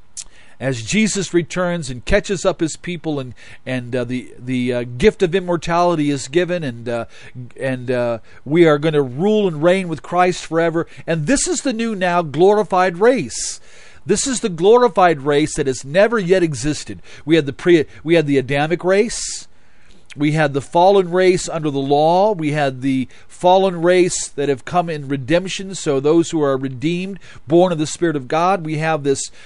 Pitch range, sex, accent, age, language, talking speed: 140-190 Hz, male, American, 40-59, English, 185 wpm